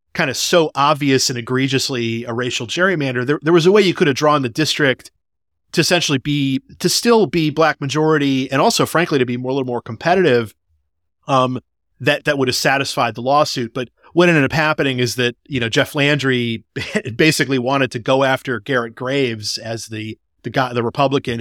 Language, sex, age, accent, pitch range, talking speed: English, male, 30-49, American, 120-145 Hz, 195 wpm